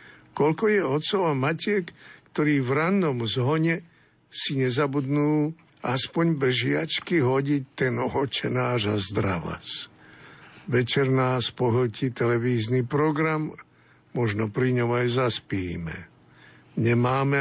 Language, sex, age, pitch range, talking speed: Slovak, male, 60-79, 120-155 Hz, 105 wpm